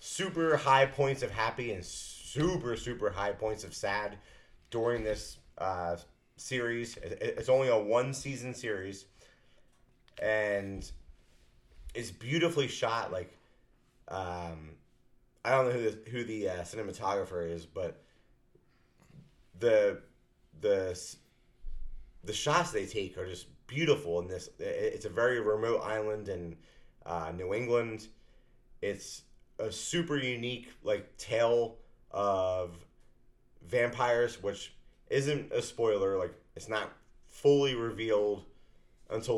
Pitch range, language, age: 95-135 Hz, English, 30-49